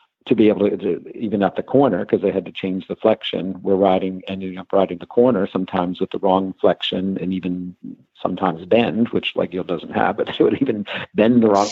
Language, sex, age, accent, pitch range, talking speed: English, male, 50-69, American, 90-100 Hz, 225 wpm